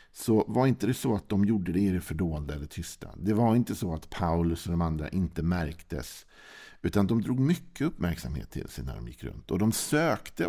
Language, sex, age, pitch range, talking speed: Swedish, male, 50-69, 85-105 Hz, 225 wpm